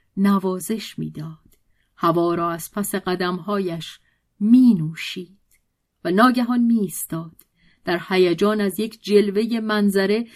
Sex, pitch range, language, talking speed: female, 170-240 Hz, Persian, 105 wpm